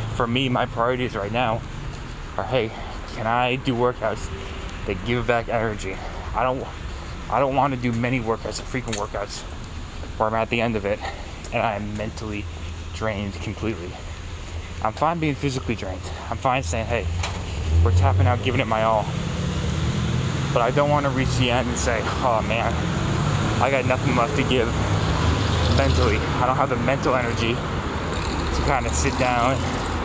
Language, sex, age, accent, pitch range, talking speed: English, male, 20-39, American, 100-125 Hz, 165 wpm